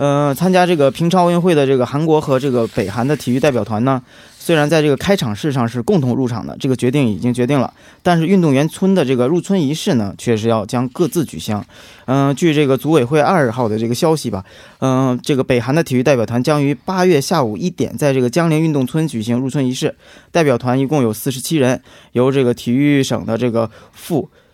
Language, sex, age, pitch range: Korean, male, 20-39, 120-155 Hz